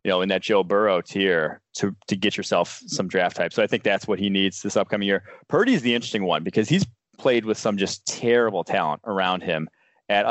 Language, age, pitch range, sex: English, 20-39, 95-115 Hz, male